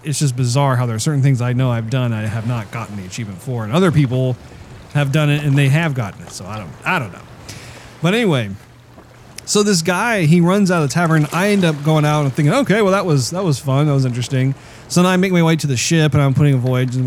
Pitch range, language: 125-165 Hz, English